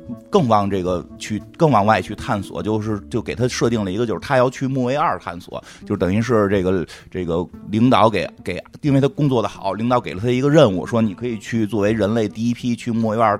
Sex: male